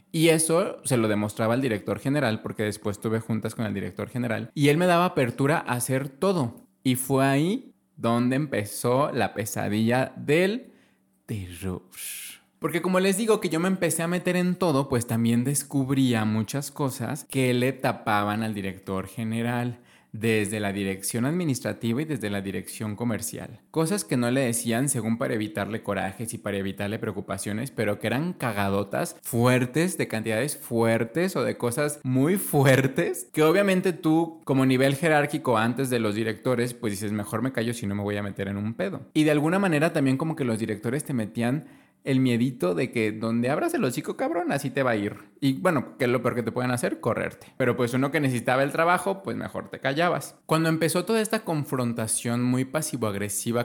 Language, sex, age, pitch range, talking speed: Spanish, male, 20-39, 110-140 Hz, 190 wpm